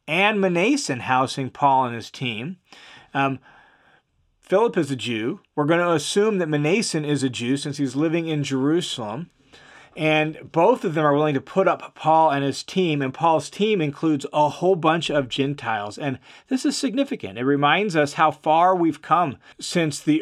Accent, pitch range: American, 135-170 Hz